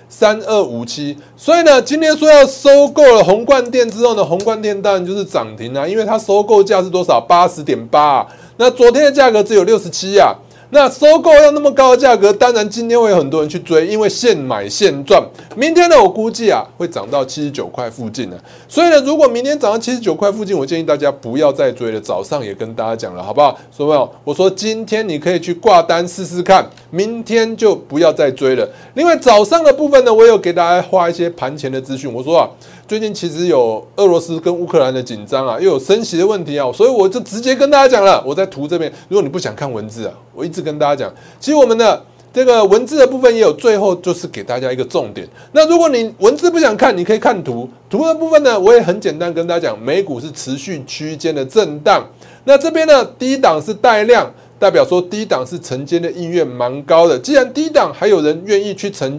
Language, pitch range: Chinese, 155-255 Hz